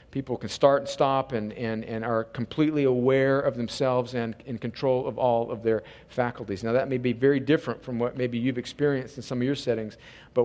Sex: male